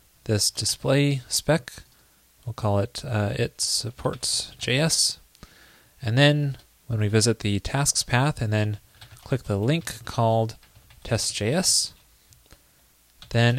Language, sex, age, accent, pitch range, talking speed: English, male, 20-39, American, 115-140 Hz, 120 wpm